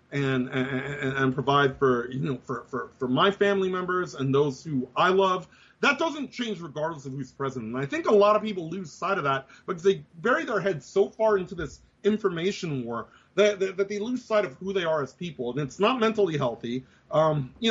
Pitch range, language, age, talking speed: 145-215 Hz, English, 30-49, 225 wpm